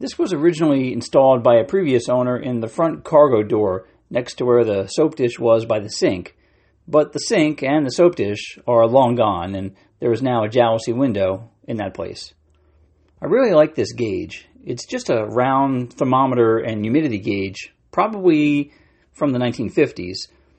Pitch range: 110-140 Hz